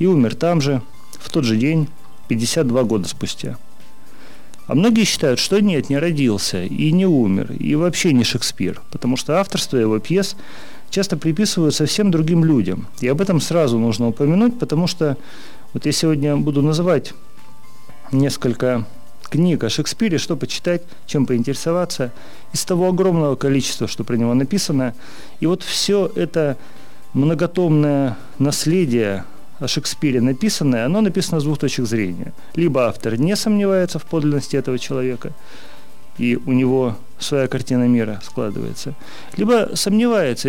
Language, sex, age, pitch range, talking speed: Russian, male, 40-59, 125-170 Hz, 140 wpm